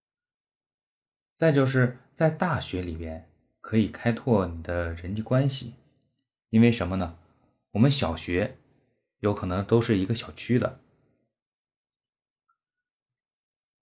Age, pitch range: 20-39, 95-135 Hz